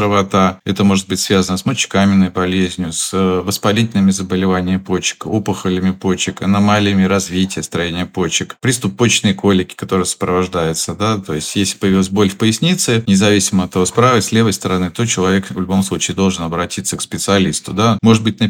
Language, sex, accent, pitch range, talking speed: Russian, male, native, 90-105 Hz, 170 wpm